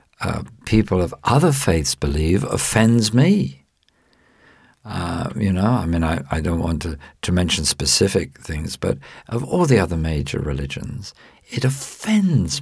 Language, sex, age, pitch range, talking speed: English, male, 50-69, 80-115 Hz, 145 wpm